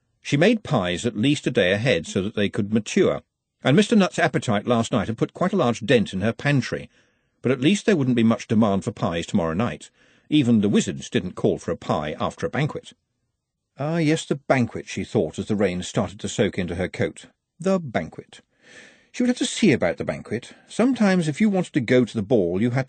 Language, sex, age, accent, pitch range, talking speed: English, male, 50-69, British, 110-170 Hz, 230 wpm